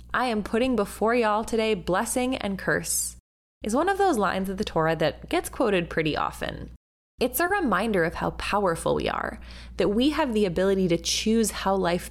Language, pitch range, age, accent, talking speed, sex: English, 170-255 Hz, 20-39, American, 195 wpm, female